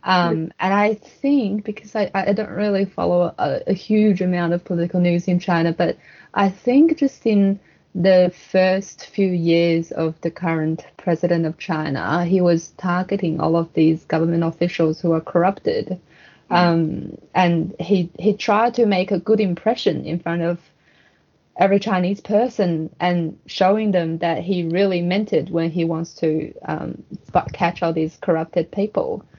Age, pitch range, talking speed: 20-39, 165-195 Hz, 160 wpm